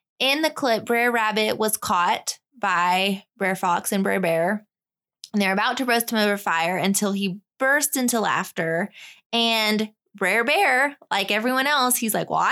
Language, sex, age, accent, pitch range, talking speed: English, female, 20-39, American, 190-235 Hz, 170 wpm